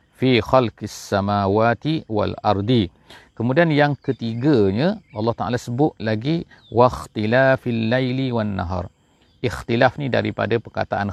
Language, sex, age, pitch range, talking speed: English, male, 40-59, 100-125 Hz, 110 wpm